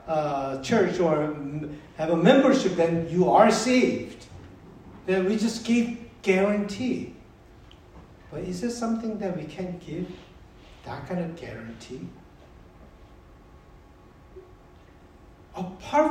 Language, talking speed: English, 110 wpm